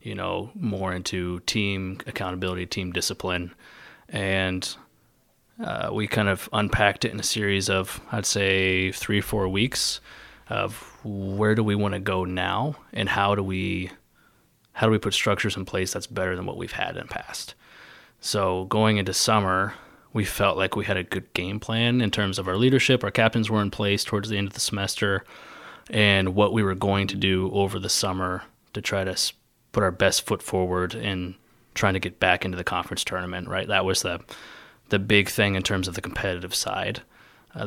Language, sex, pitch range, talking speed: English, male, 95-105 Hz, 195 wpm